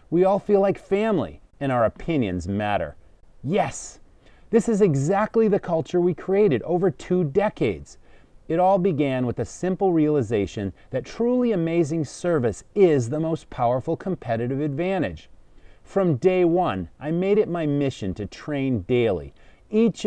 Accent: American